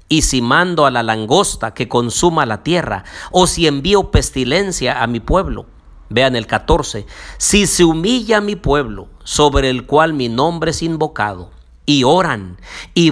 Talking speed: 160 wpm